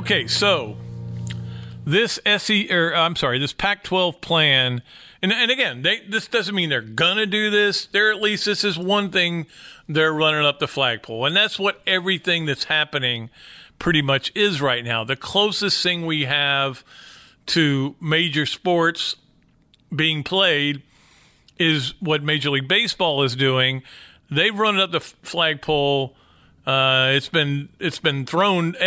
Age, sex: 50-69, male